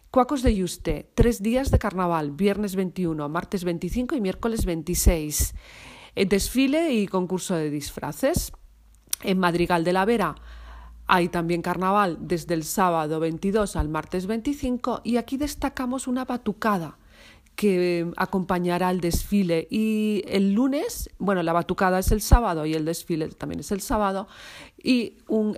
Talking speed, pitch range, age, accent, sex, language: 145 wpm, 170-220 Hz, 40-59, Spanish, female, Spanish